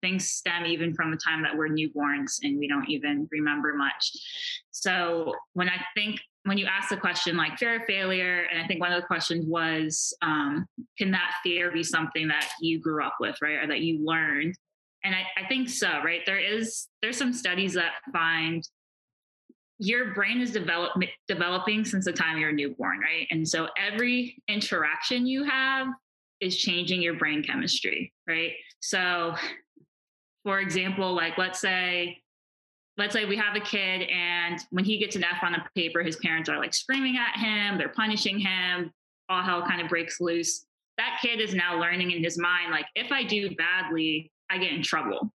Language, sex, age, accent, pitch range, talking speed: English, female, 20-39, American, 165-210 Hz, 185 wpm